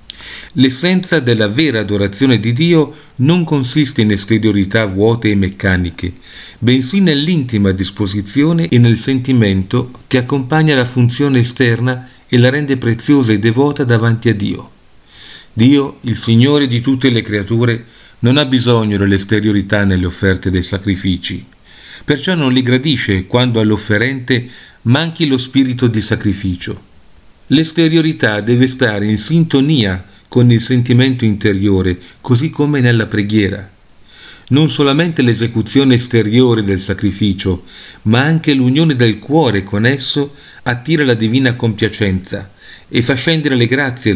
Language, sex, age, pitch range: Italian, male, 50-69, 105-140 Hz